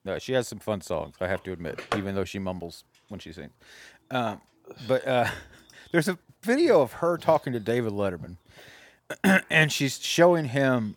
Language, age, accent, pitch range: English, 30-49, American, 95-125 Hz